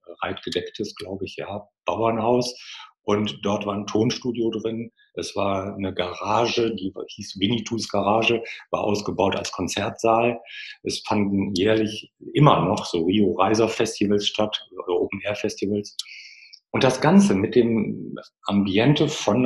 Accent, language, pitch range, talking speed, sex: German, German, 100-125 Hz, 125 wpm, male